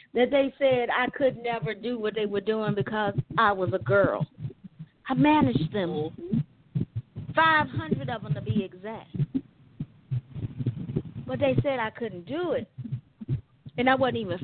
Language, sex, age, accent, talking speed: English, female, 40-59, American, 150 wpm